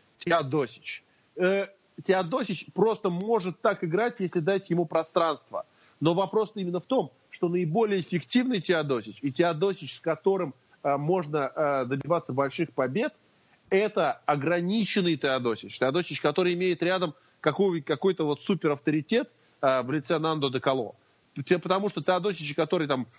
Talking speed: 125 wpm